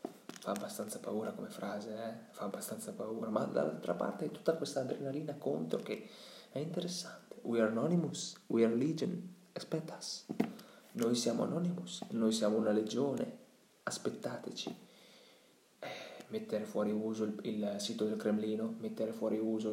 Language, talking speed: Italian, 140 wpm